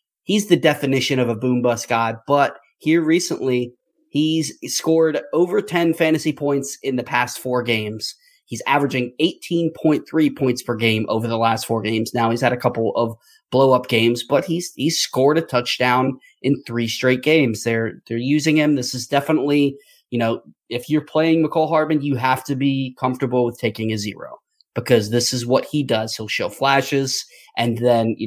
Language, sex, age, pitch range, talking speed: English, male, 30-49, 115-140 Hz, 180 wpm